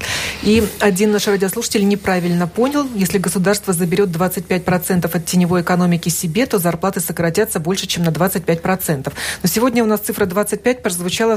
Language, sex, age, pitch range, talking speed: Russian, female, 30-49, 175-215 Hz, 170 wpm